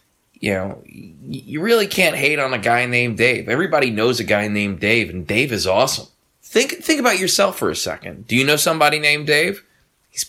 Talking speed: 205 wpm